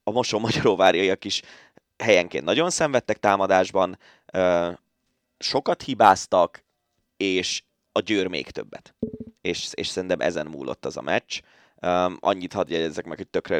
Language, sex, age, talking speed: Hungarian, male, 20-39, 130 wpm